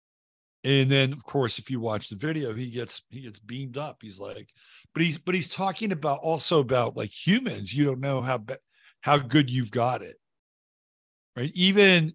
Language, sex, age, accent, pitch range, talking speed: English, male, 50-69, American, 115-145 Hz, 195 wpm